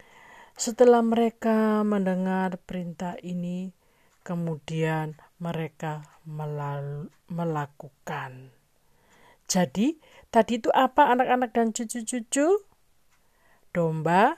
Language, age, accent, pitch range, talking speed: Indonesian, 50-69, native, 170-240 Hz, 70 wpm